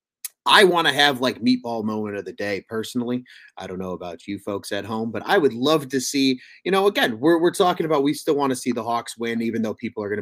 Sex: male